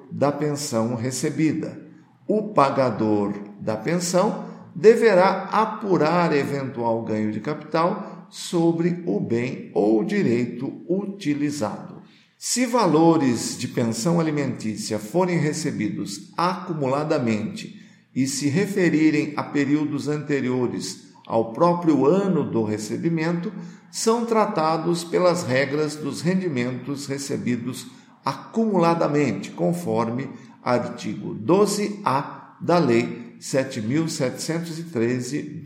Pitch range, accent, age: 125-185 Hz, Brazilian, 50-69